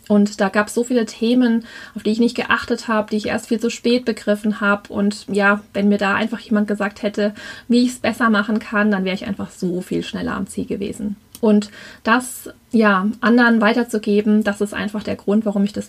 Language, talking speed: German, 225 wpm